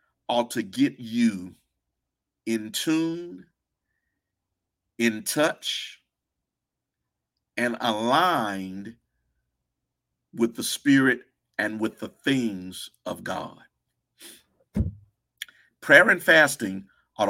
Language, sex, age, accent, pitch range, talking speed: English, male, 50-69, American, 100-130 Hz, 80 wpm